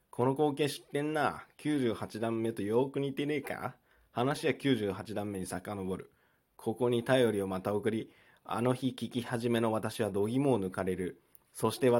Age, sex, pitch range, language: 20-39, male, 100-135 Hz, Japanese